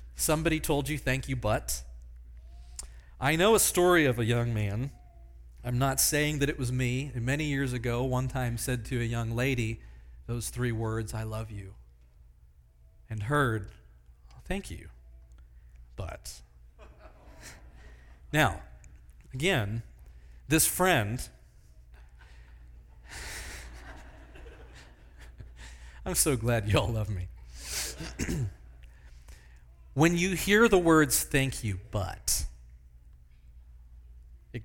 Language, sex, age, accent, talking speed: English, male, 40-59, American, 110 wpm